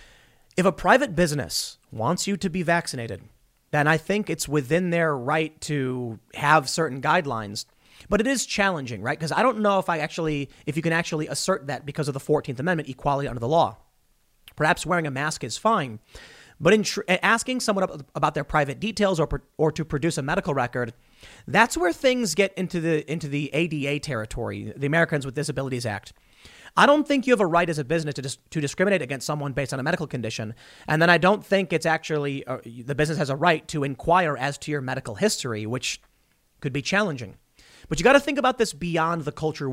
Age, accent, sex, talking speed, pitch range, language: 30-49, American, male, 210 wpm, 135-185 Hz, English